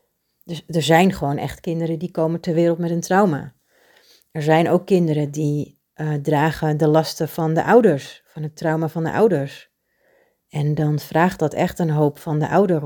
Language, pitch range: Dutch, 150-175 Hz